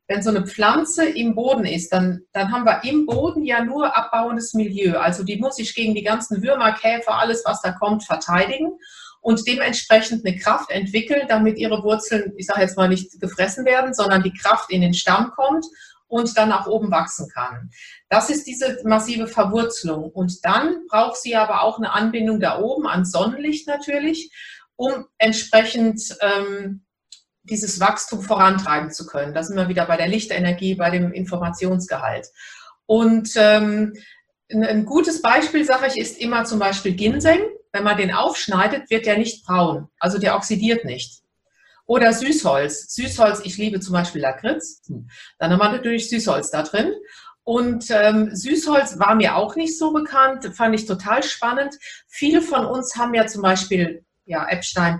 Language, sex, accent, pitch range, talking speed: German, female, German, 190-250 Hz, 170 wpm